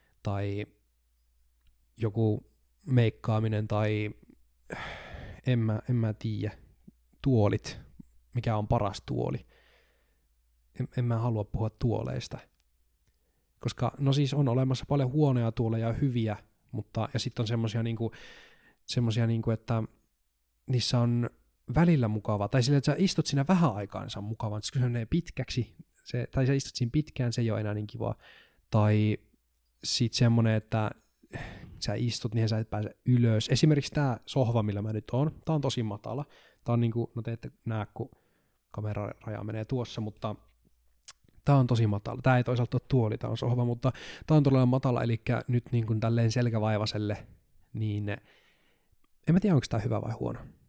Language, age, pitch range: Finnish, 20-39, 105-125 Hz